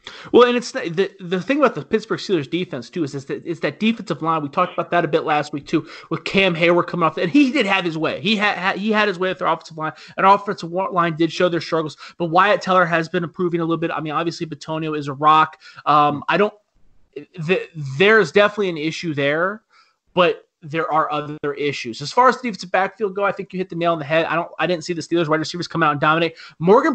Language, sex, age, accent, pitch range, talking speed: English, male, 30-49, American, 155-195 Hz, 265 wpm